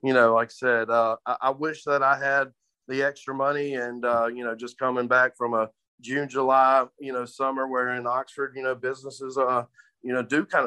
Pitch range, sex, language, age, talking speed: 120-145 Hz, male, English, 30-49, 200 wpm